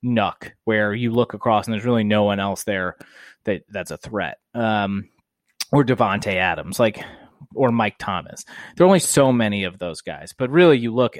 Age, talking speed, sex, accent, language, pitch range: 20-39, 195 wpm, male, American, English, 105-130 Hz